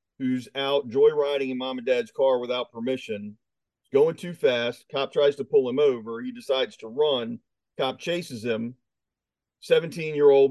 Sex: male